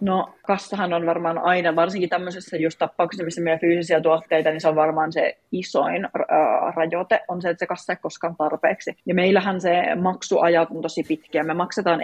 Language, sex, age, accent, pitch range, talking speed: Finnish, female, 30-49, native, 155-175 Hz, 185 wpm